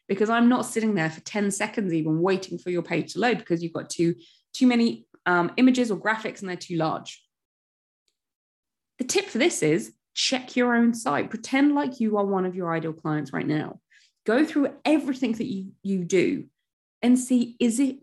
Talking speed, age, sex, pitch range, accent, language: 200 wpm, 20-39, female, 175-255 Hz, British, English